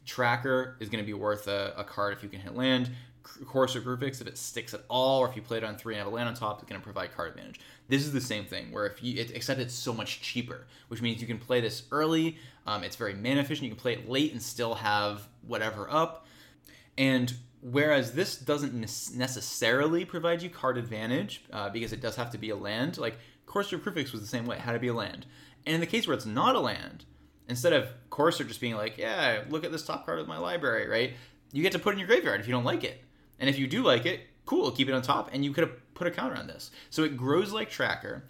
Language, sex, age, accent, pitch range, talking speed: English, male, 20-39, American, 110-135 Hz, 265 wpm